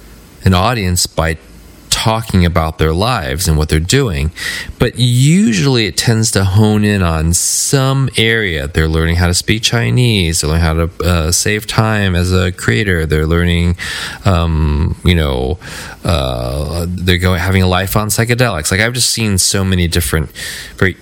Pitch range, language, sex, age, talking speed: 85-110 Hz, English, male, 20-39, 165 wpm